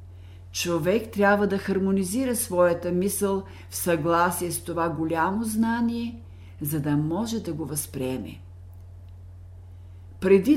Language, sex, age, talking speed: Bulgarian, female, 50-69, 110 wpm